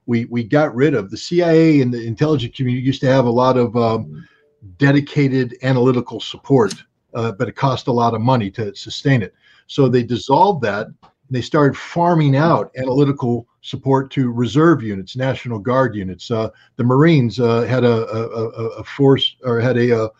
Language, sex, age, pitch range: English, male, 50-69, 120-145 Hz